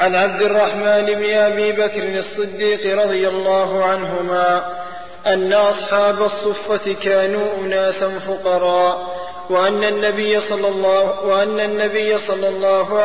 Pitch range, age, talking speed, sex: 185-205 Hz, 20-39, 100 wpm, male